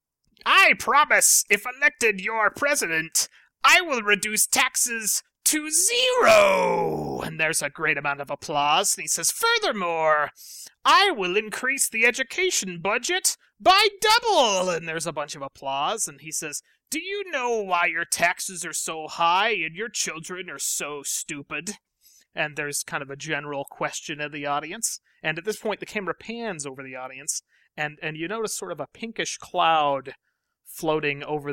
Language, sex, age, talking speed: English, male, 30-49, 165 wpm